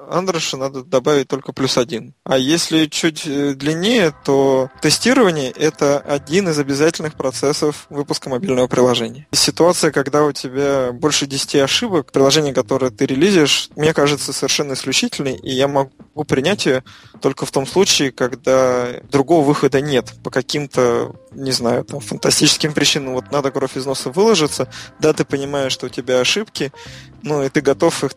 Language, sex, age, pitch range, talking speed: Russian, male, 20-39, 130-155 Hz, 160 wpm